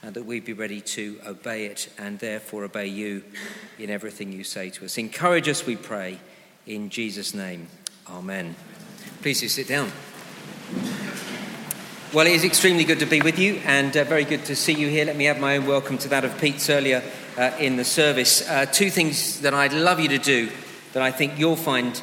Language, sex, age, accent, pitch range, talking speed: English, male, 40-59, British, 125-165 Hz, 205 wpm